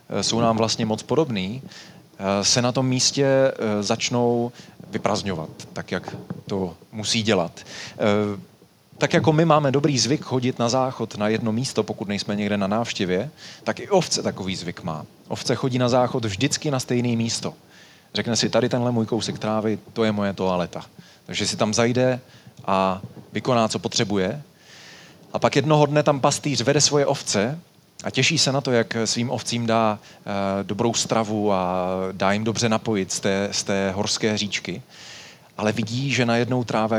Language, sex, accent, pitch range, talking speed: Czech, male, native, 105-125 Hz, 165 wpm